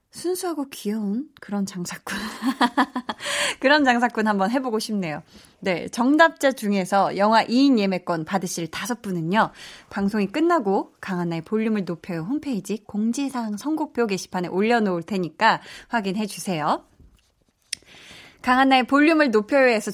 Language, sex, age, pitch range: Korean, female, 20-39, 185-270 Hz